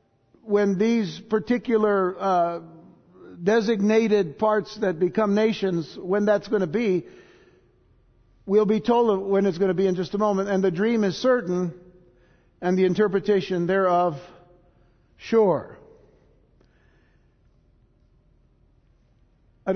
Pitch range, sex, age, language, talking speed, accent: 150-190 Hz, male, 60-79, English, 115 wpm, American